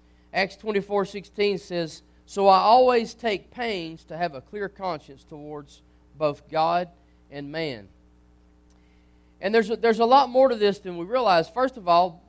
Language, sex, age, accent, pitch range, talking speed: English, male, 40-59, American, 140-200 Hz, 165 wpm